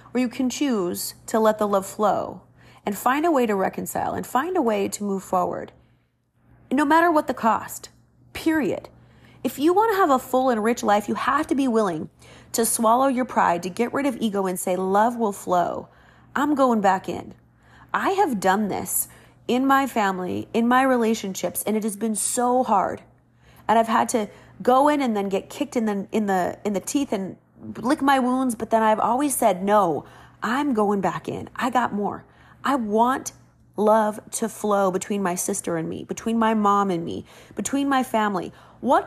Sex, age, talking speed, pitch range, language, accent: female, 30-49, 200 wpm, 200-260 Hz, English, American